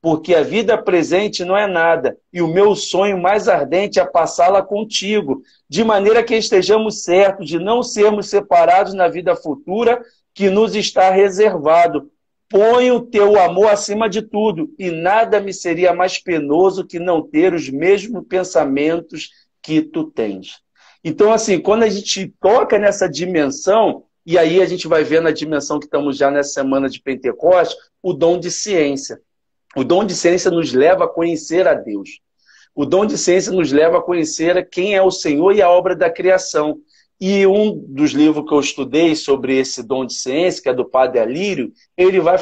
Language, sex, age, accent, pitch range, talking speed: Portuguese, male, 50-69, Brazilian, 160-210 Hz, 180 wpm